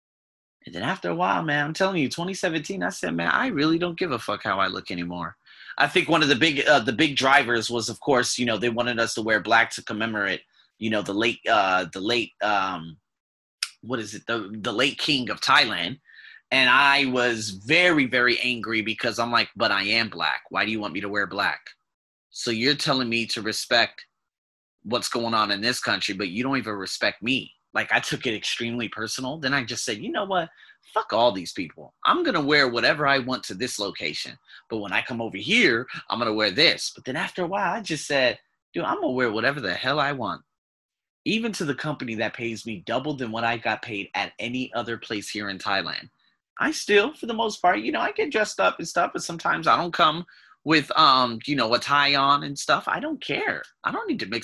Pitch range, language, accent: 110-160 Hz, English, American